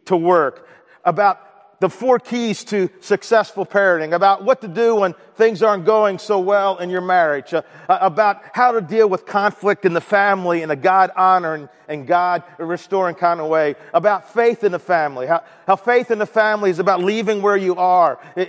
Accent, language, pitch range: American, English, 175-215 Hz